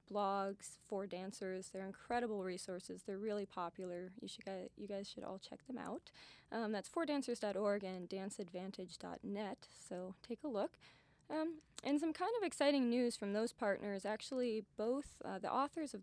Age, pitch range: 20-39, 190-230 Hz